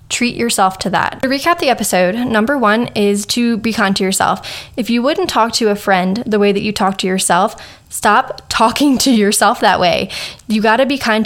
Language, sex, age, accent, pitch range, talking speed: English, female, 10-29, American, 200-230 Hz, 220 wpm